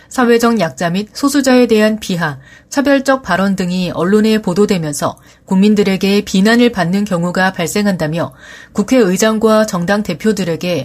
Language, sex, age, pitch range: Korean, female, 30-49, 180-230 Hz